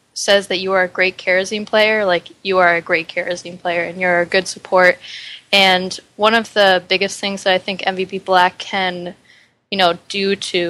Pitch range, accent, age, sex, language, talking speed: 180-200 Hz, American, 10-29, female, English, 200 wpm